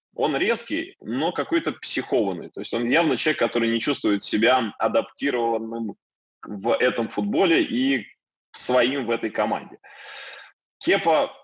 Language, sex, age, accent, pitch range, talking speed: Russian, male, 20-39, native, 110-140 Hz, 125 wpm